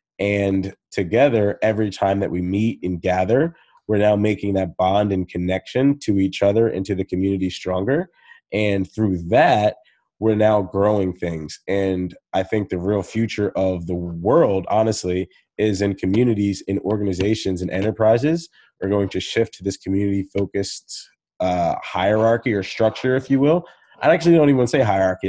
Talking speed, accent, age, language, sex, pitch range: 170 wpm, American, 20-39, English, male, 95-110 Hz